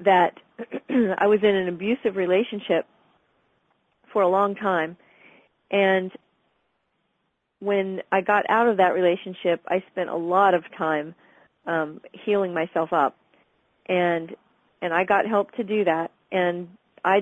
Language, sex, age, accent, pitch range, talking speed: English, female, 40-59, American, 175-215 Hz, 135 wpm